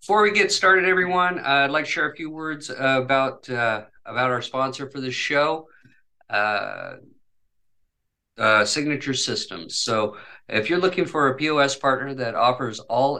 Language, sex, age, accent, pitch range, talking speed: English, male, 50-69, American, 115-135 Hz, 170 wpm